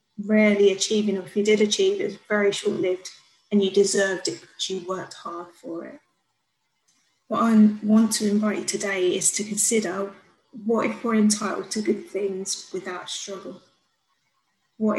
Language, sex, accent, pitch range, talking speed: English, female, British, 195-215 Hz, 160 wpm